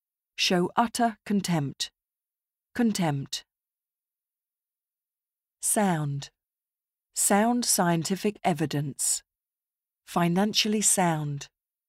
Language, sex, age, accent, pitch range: Japanese, female, 40-59, British, 150-210 Hz